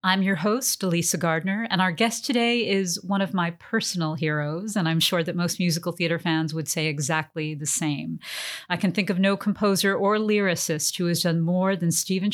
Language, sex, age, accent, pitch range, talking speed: English, female, 50-69, American, 165-205 Hz, 205 wpm